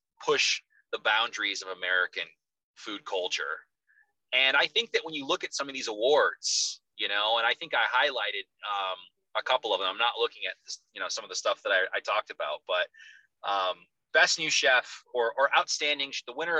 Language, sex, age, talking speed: English, male, 30-49, 205 wpm